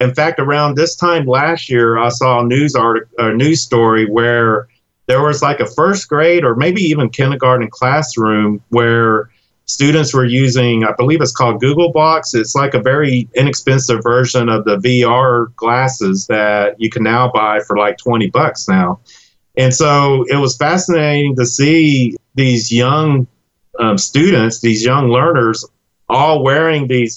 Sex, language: male, English